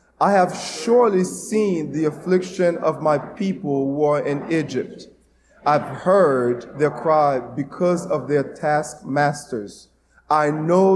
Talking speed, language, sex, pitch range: 125 wpm, English, male, 145-180 Hz